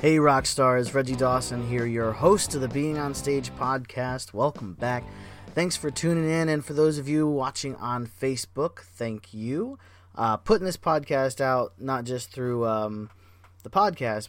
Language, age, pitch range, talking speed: English, 30-49, 100-130 Hz, 170 wpm